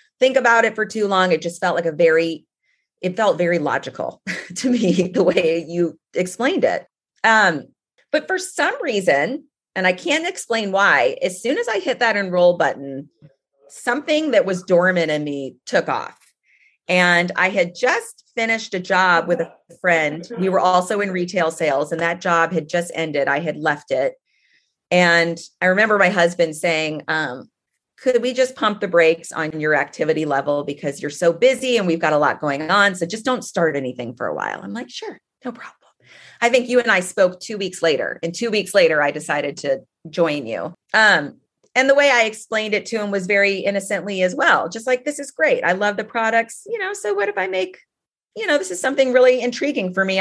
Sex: female